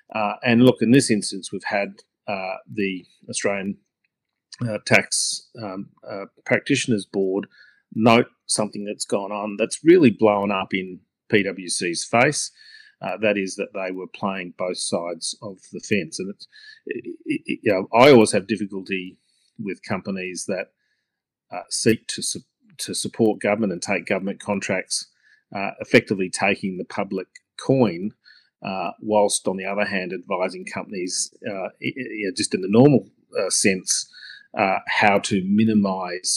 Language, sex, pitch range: English, male, 95-120 Hz